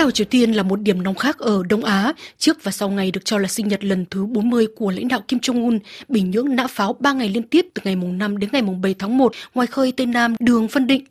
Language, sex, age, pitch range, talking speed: Vietnamese, female, 20-39, 195-255 Hz, 285 wpm